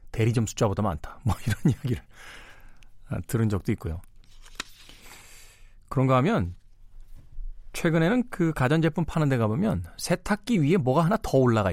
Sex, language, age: male, Korean, 40-59